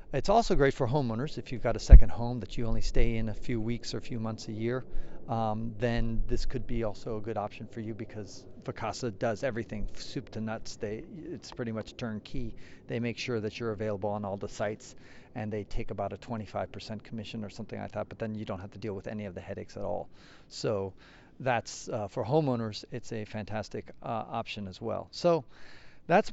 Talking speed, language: 220 wpm, English